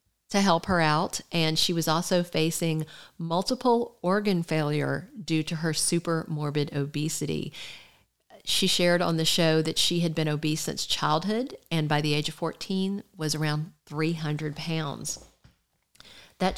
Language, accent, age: English, American, 50-69